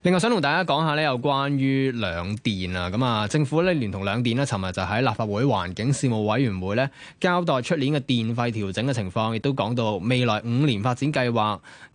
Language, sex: Chinese, male